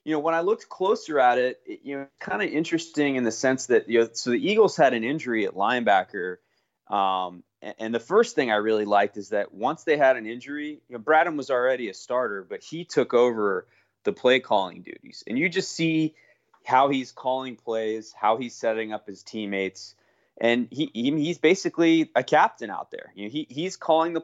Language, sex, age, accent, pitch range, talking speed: English, male, 20-39, American, 110-140 Hz, 220 wpm